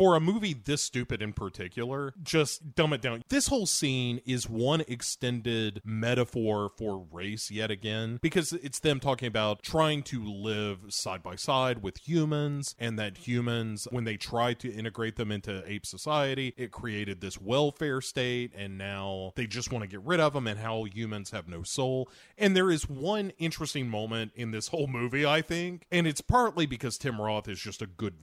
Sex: male